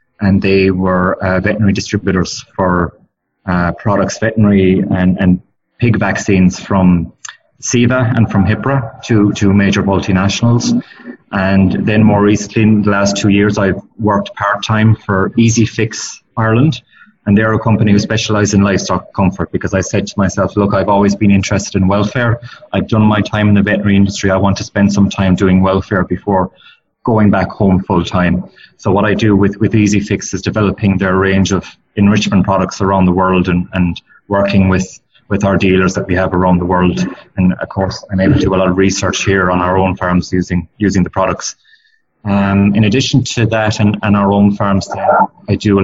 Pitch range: 95-105 Hz